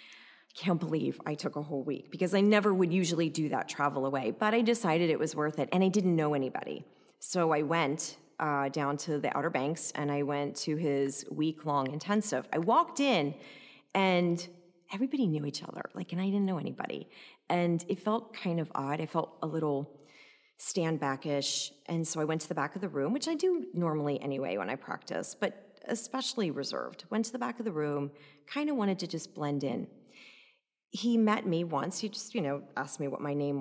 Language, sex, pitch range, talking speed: English, female, 145-230 Hz, 210 wpm